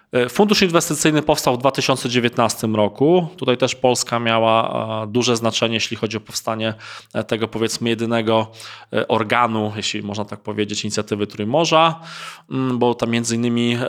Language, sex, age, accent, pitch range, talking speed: Polish, male, 20-39, native, 115-140 Hz, 130 wpm